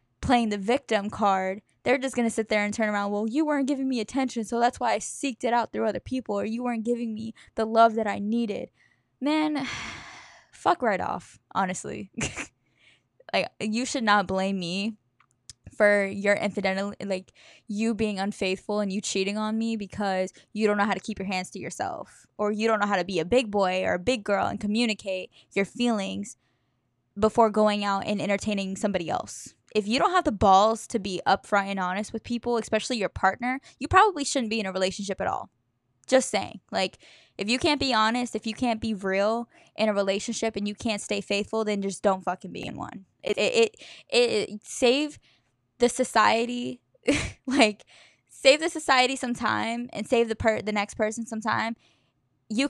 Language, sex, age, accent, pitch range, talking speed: English, female, 10-29, American, 200-240 Hz, 195 wpm